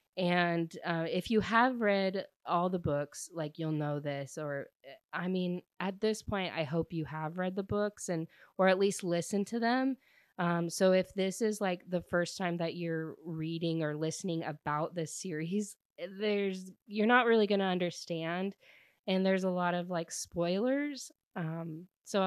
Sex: female